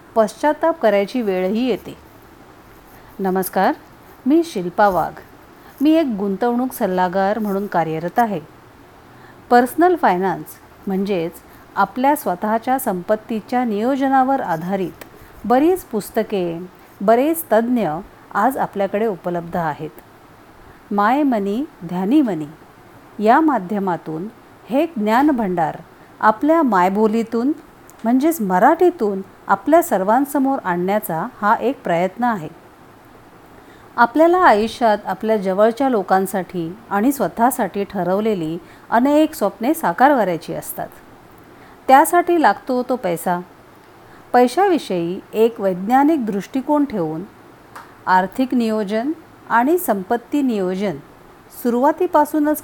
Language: Marathi